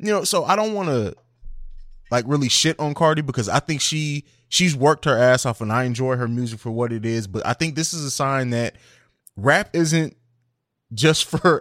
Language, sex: English, male